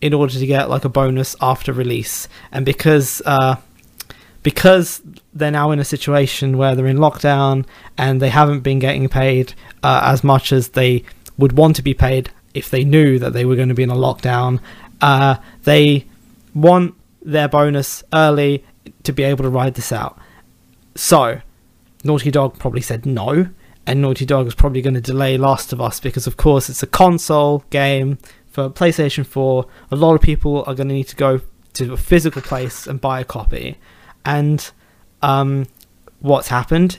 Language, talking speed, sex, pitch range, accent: English, 180 wpm, male, 130-145 Hz, British